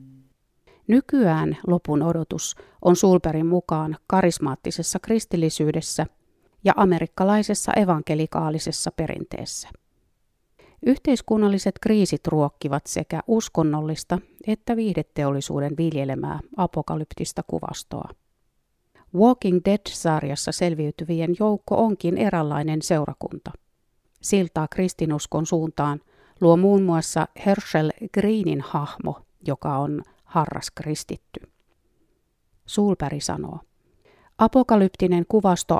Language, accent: Finnish, native